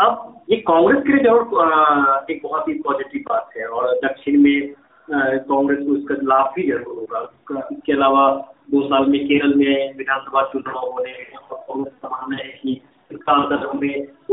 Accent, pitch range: native, 140-220 Hz